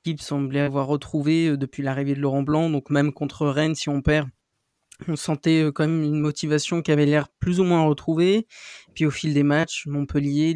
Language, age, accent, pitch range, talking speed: French, 20-39, French, 140-165 Hz, 200 wpm